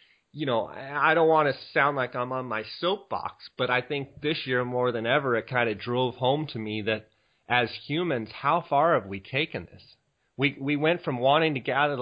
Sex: male